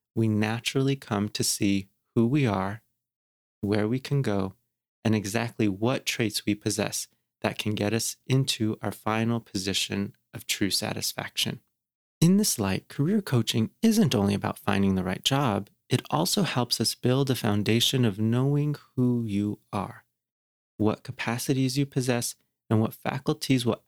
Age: 30-49